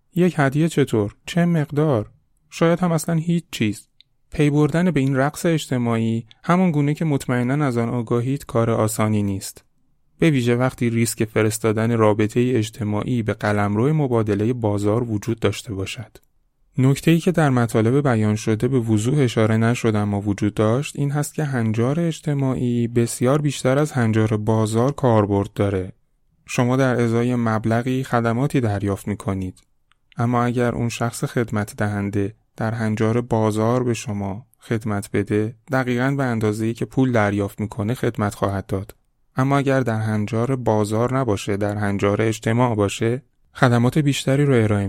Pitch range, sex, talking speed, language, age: 105-130 Hz, male, 150 wpm, Persian, 30-49